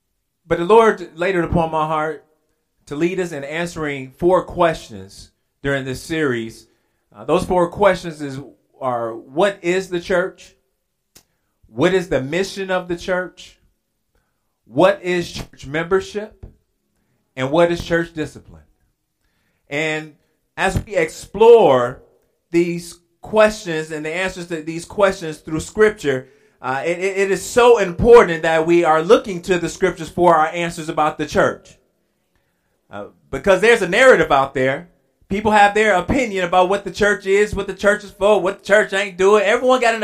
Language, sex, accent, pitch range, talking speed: English, male, American, 155-200 Hz, 160 wpm